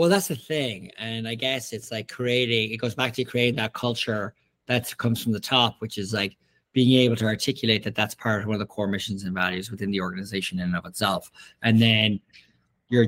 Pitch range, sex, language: 105-125 Hz, male, English